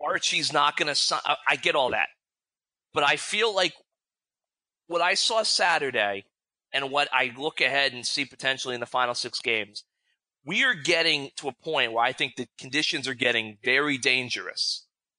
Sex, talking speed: male, 180 wpm